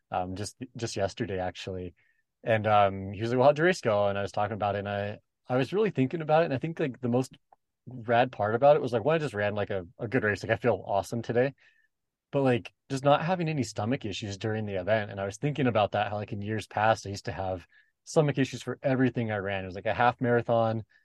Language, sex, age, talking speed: English, male, 20-39, 260 wpm